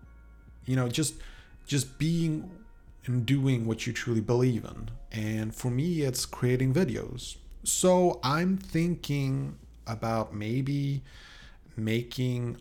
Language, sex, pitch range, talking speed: English, male, 110-135 Hz, 115 wpm